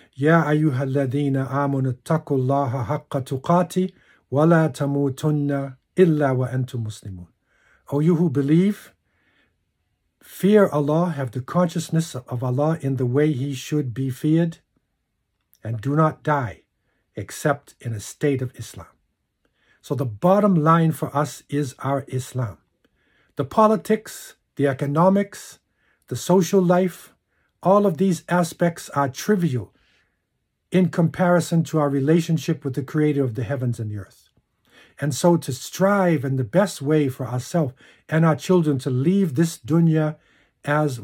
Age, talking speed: 50-69, 130 wpm